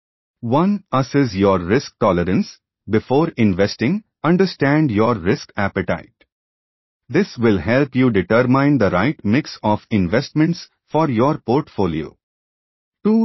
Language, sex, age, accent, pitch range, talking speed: English, male, 40-59, Indian, 100-145 Hz, 115 wpm